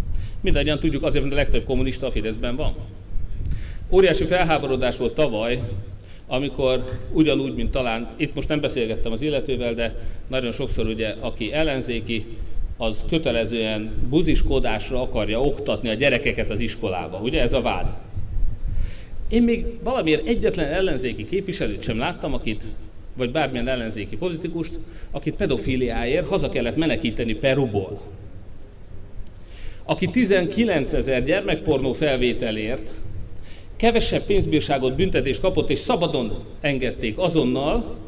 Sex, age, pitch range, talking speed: male, 40-59, 100-140 Hz, 120 wpm